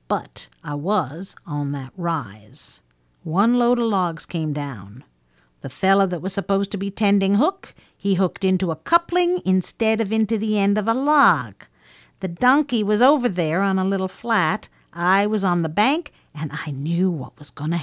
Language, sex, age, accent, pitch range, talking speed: English, female, 50-69, American, 175-260 Hz, 185 wpm